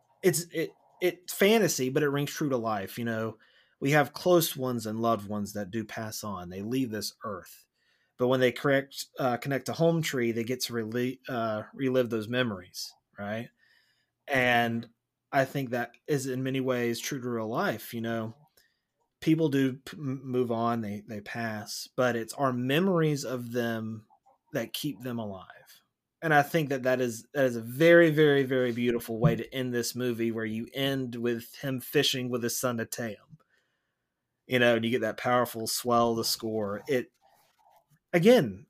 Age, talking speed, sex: 30-49, 185 wpm, male